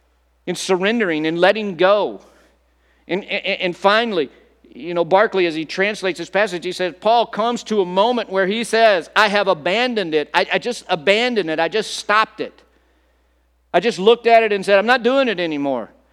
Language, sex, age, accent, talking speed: English, male, 50-69, American, 195 wpm